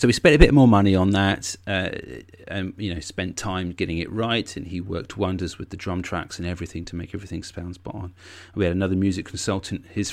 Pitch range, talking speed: 90-105 Hz, 230 wpm